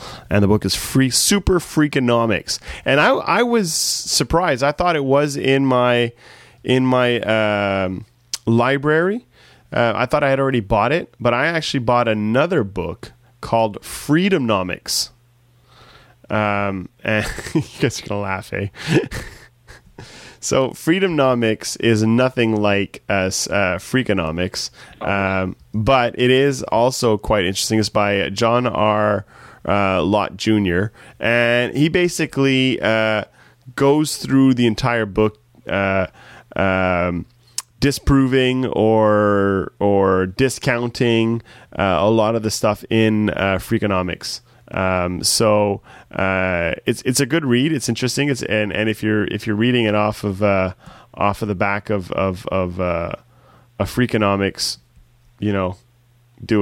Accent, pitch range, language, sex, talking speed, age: American, 100-130 Hz, English, male, 135 wpm, 20-39